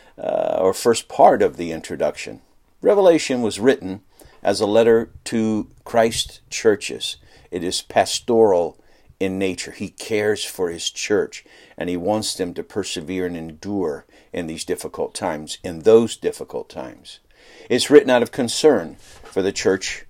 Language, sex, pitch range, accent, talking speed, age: English, male, 95-120 Hz, American, 150 wpm, 60-79